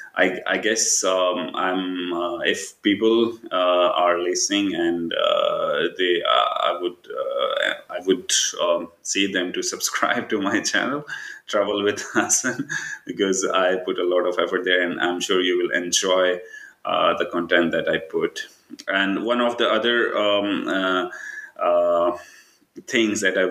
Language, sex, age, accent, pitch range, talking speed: English, male, 30-49, Indian, 90-105 Hz, 160 wpm